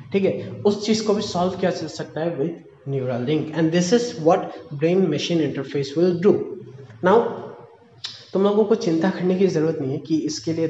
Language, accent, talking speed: Hindi, native, 195 wpm